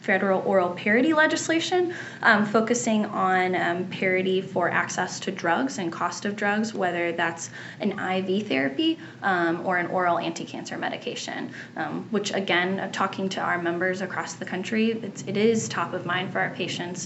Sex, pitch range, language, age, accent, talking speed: female, 180-210 Hz, English, 10-29, American, 160 wpm